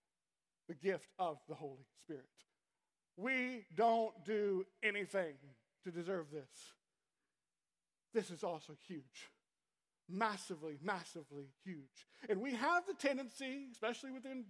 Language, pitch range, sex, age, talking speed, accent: English, 185-275 Hz, male, 50-69, 110 wpm, American